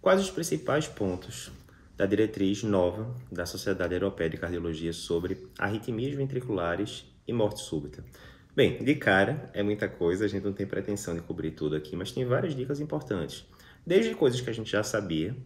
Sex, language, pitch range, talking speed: male, Portuguese, 85-105 Hz, 175 wpm